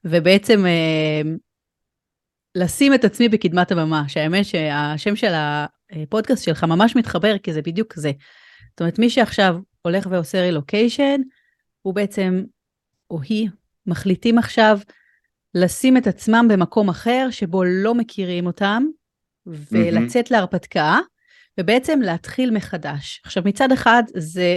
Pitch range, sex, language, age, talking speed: 175-225 Hz, female, Hebrew, 30-49, 120 wpm